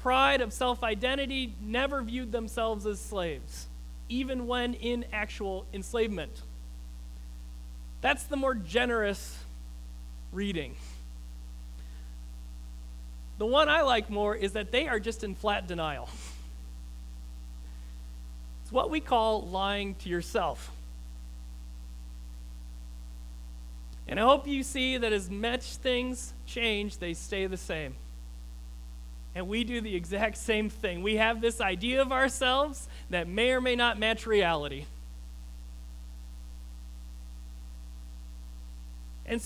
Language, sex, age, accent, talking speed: English, male, 40-59, American, 110 wpm